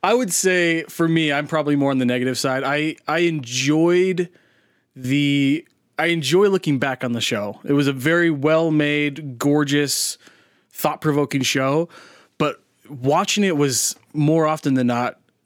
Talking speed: 160 wpm